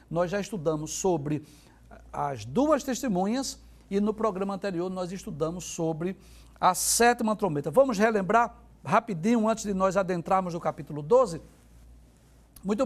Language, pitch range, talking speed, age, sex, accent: Portuguese, 170-235 Hz, 130 wpm, 60-79, male, Brazilian